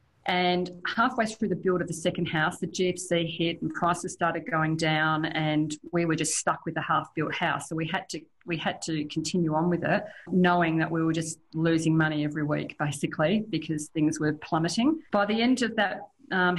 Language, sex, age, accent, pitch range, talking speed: English, female, 40-59, Australian, 155-190 Hz, 205 wpm